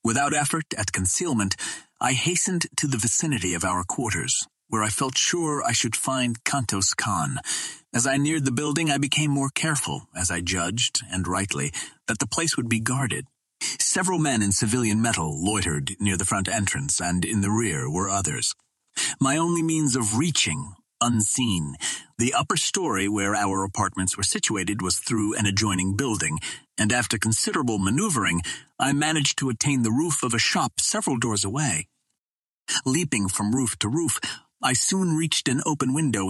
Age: 40-59